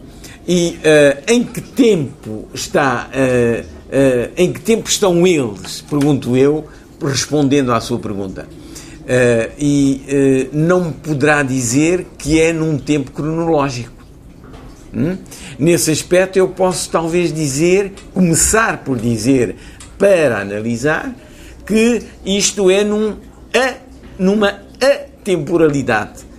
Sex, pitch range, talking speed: male, 130-185 Hz, 115 wpm